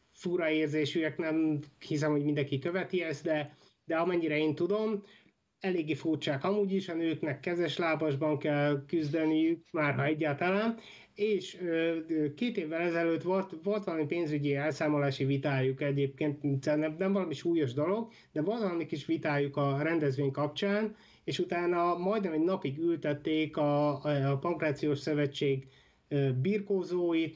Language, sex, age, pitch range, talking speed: Hungarian, male, 30-49, 145-175 Hz, 130 wpm